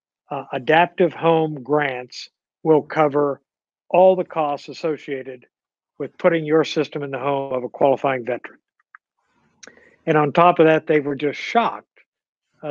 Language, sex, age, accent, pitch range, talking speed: English, male, 60-79, American, 135-160 Hz, 145 wpm